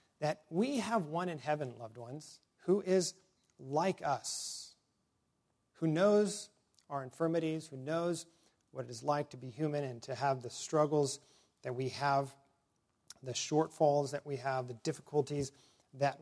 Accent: American